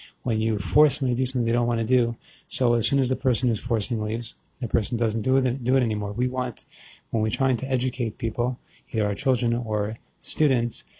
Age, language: 30-49, English